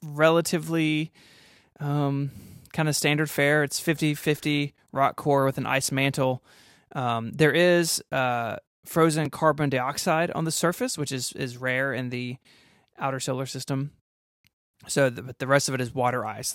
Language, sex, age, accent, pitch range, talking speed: English, male, 20-39, American, 130-155 Hz, 155 wpm